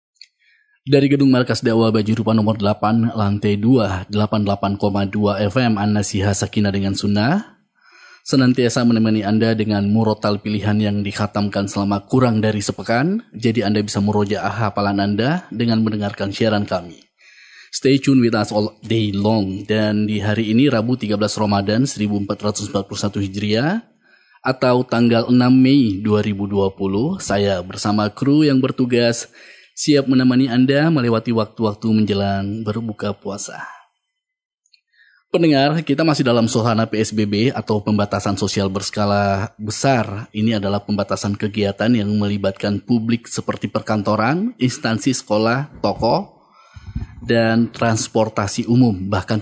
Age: 20-39